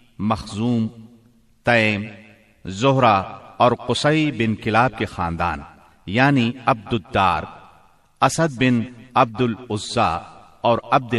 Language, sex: Urdu, male